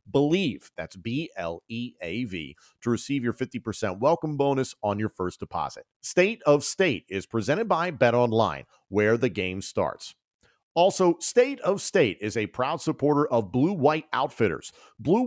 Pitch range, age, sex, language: 110-160 Hz, 40-59, male, English